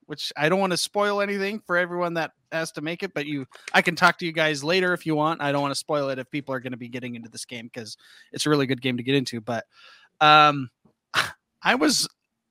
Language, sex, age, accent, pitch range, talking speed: English, male, 30-49, American, 135-180 Hz, 265 wpm